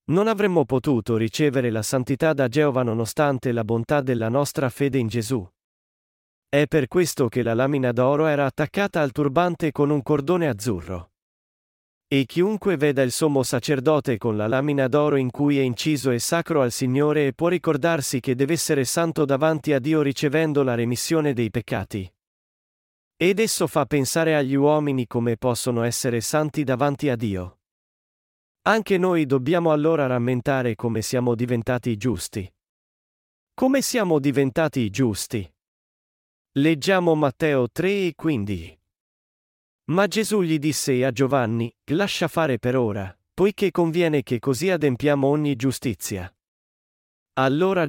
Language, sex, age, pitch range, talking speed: Italian, male, 40-59, 120-160 Hz, 140 wpm